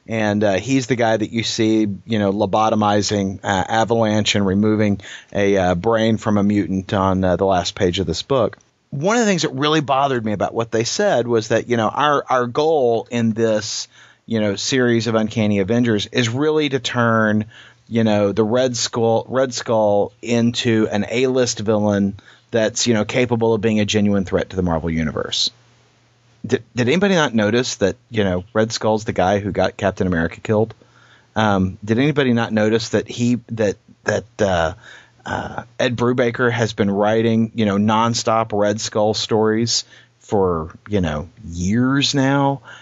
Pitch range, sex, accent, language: 105-120 Hz, male, American, English